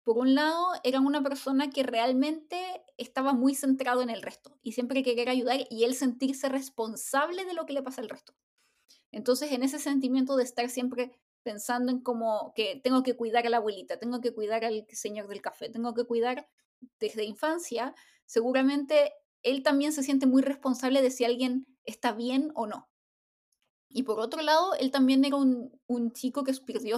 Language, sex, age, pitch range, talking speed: Spanish, female, 20-39, 235-280 Hz, 185 wpm